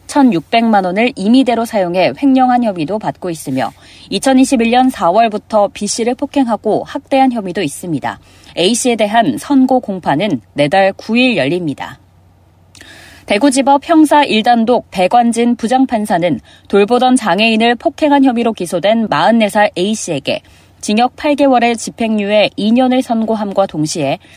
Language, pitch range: Korean, 180-250 Hz